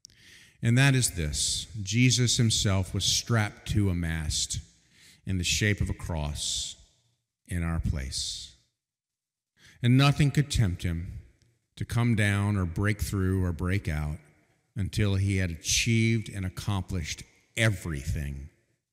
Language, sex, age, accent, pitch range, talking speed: English, male, 50-69, American, 85-115 Hz, 130 wpm